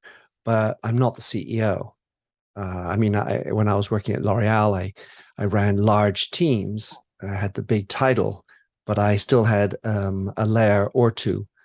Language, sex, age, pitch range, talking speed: English, male, 40-59, 105-125 Hz, 175 wpm